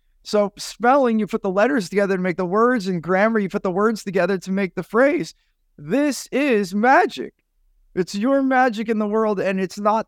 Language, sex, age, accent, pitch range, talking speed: English, male, 30-49, American, 150-220 Hz, 200 wpm